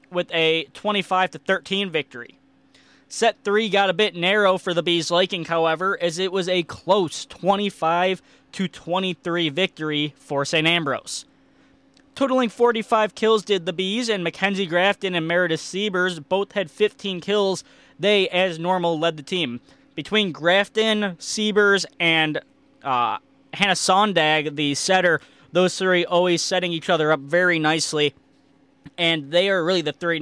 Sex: male